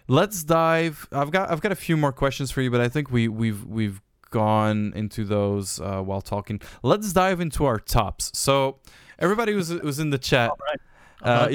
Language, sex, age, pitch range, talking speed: Dutch, male, 20-39, 105-135 Hz, 190 wpm